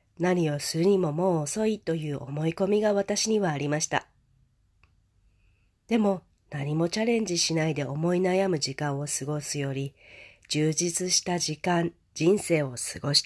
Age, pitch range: 40-59, 135-180 Hz